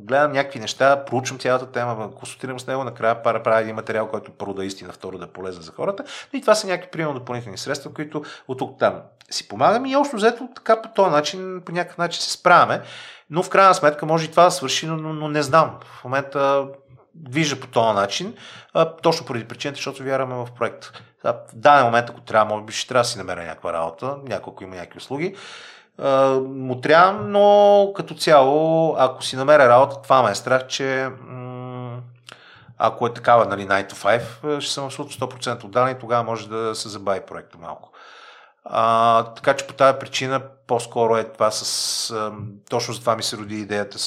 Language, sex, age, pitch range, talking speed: Bulgarian, male, 40-59, 105-145 Hz, 195 wpm